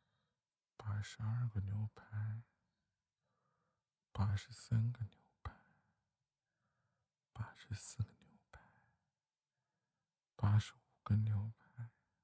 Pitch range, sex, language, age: 105-115 Hz, male, Chinese, 50-69